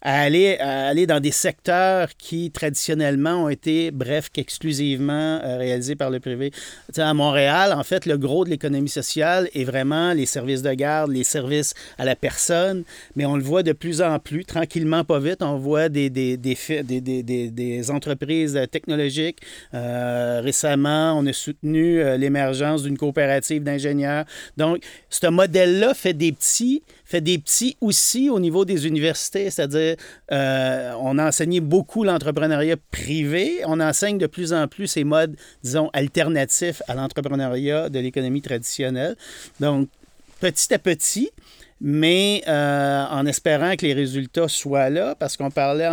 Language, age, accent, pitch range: French, 40-59, Canadian, 140-165 Hz